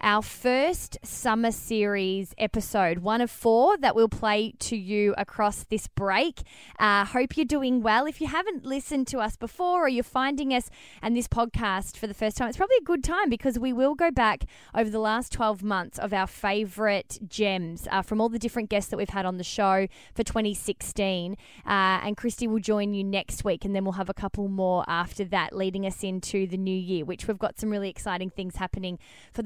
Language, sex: English, female